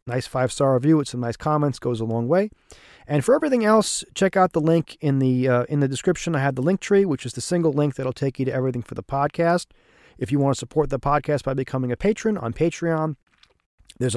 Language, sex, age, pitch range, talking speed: English, male, 40-59, 130-165 Hz, 245 wpm